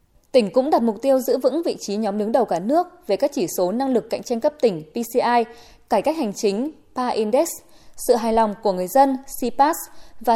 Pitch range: 210-270 Hz